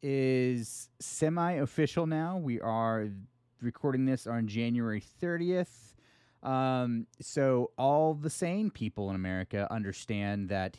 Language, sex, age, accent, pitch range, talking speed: English, male, 30-49, American, 100-130 Hz, 110 wpm